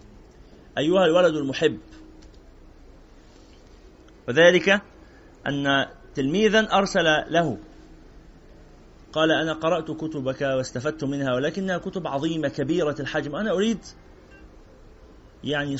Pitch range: 120-180 Hz